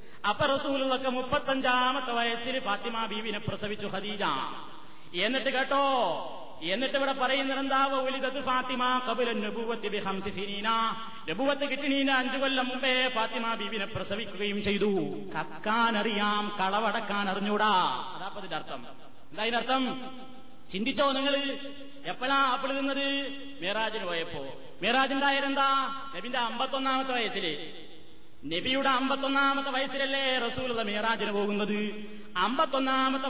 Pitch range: 210-270 Hz